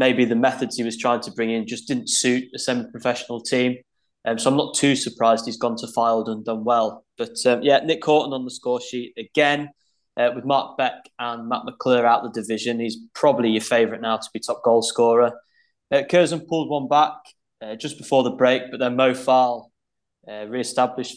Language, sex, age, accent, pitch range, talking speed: English, male, 20-39, British, 120-140 Hz, 210 wpm